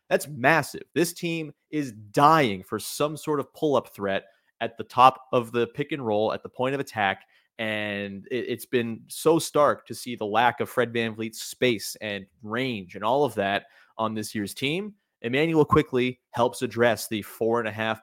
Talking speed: 190 wpm